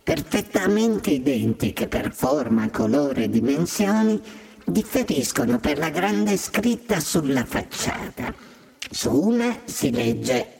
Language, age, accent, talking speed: Italian, 50-69, native, 100 wpm